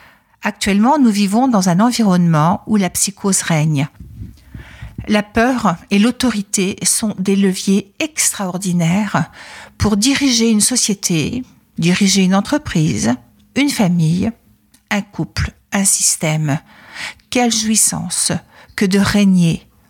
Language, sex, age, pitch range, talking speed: French, female, 60-79, 180-230 Hz, 110 wpm